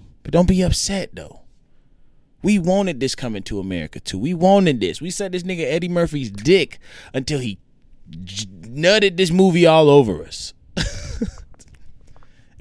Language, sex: English, male